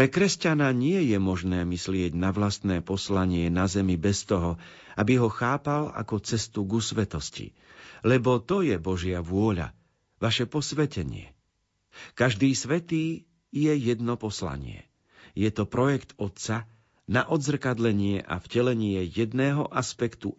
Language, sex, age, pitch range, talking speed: Slovak, male, 50-69, 100-130 Hz, 125 wpm